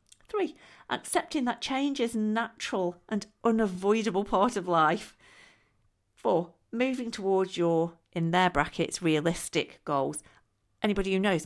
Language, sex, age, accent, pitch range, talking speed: English, female, 40-59, British, 155-225 Hz, 125 wpm